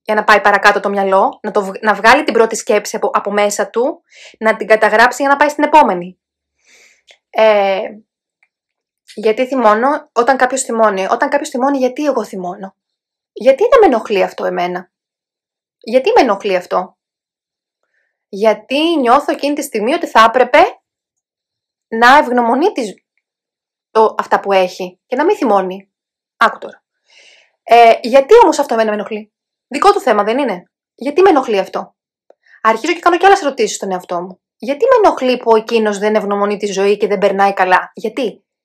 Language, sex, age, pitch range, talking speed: Greek, female, 20-39, 205-290 Hz, 165 wpm